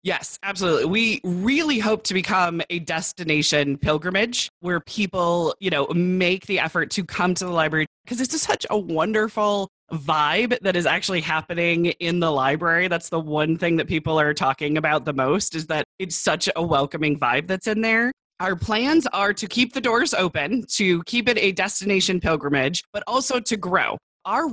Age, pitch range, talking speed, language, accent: 20-39, 160-215 Hz, 185 wpm, English, American